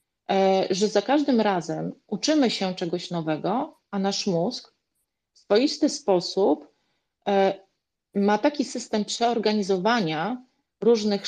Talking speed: 100 wpm